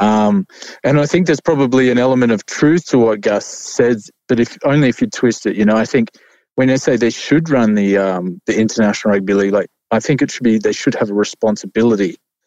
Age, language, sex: 20-39, English, male